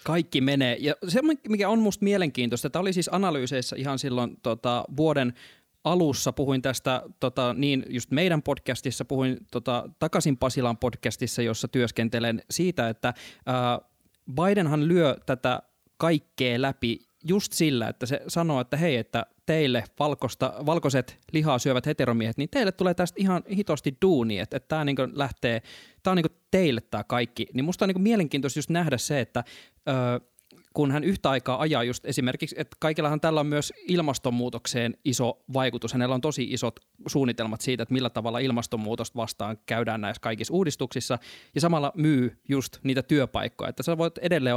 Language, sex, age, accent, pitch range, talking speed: Finnish, male, 20-39, native, 120-155 Hz, 155 wpm